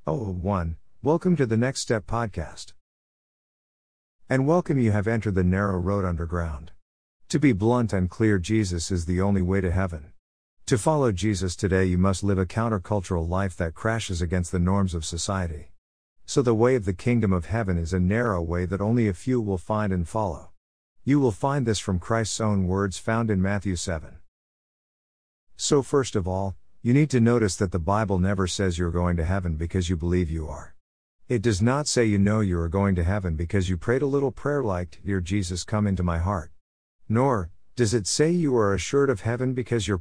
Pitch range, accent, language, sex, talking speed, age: 85-115 Hz, American, English, male, 200 wpm, 50-69